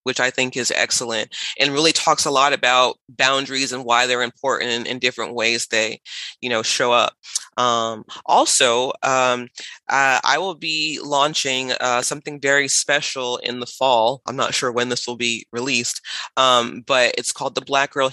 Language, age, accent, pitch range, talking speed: English, 20-39, American, 120-140 Hz, 185 wpm